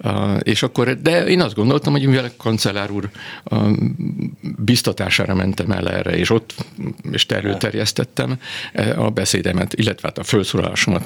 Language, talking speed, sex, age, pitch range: Hungarian, 140 wpm, male, 50-69, 100-120 Hz